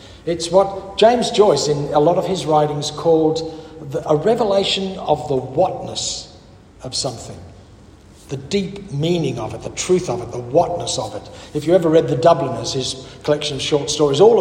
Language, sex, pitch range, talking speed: English, male, 140-205 Hz, 180 wpm